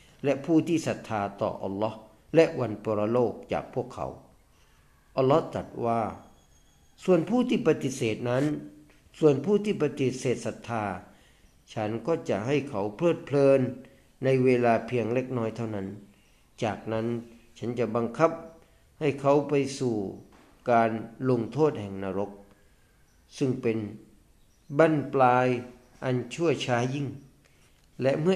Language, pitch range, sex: Thai, 110-140 Hz, male